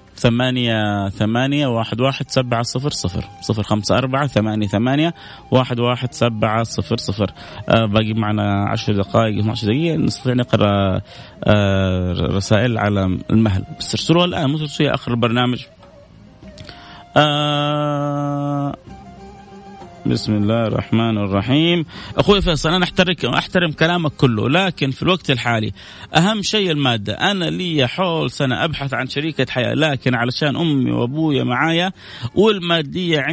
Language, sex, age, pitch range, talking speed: Arabic, male, 30-49, 115-160 Hz, 120 wpm